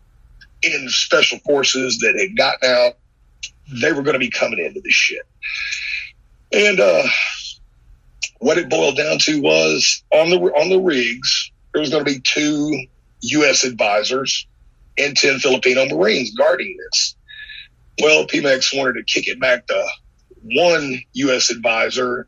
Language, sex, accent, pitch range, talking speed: English, male, American, 125-185 Hz, 145 wpm